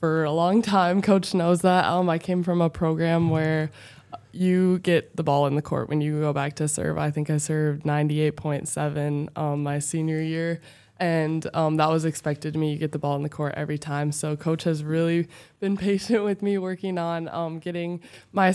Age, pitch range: 20-39, 150-165 Hz